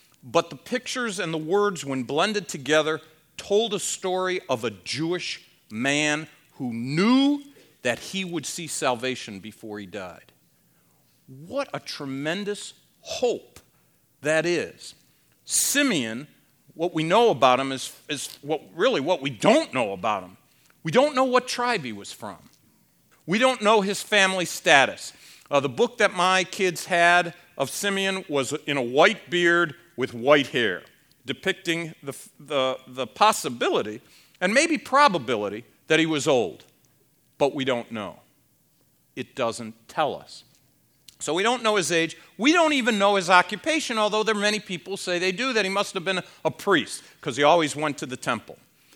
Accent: American